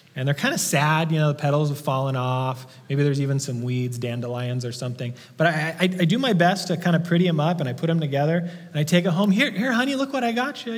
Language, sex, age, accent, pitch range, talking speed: English, male, 30-49, American, 135-190 Hz, 285 wpm